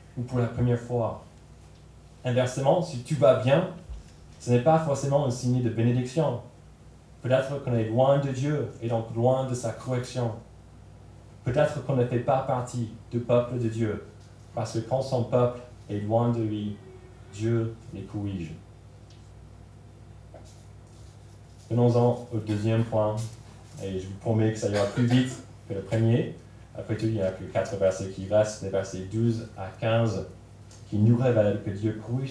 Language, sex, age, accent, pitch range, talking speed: French, male, 20-39, French, 105-125 Hz, 165 wpm